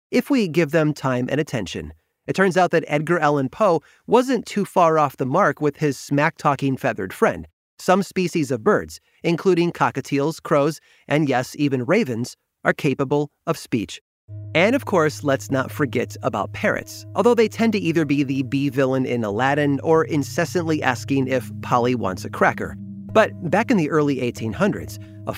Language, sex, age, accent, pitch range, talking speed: English, male, 30-49, American, 120-160 Hz, 175 wpm